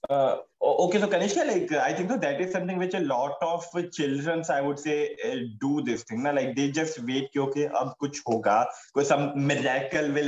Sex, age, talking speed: male, 20-39, 140 wpm